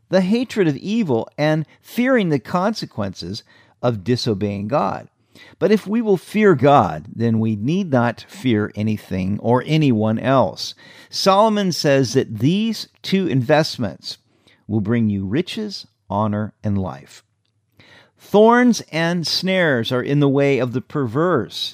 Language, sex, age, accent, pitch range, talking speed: English, male, 50-69, American, 110-165 Hz, 135 wpm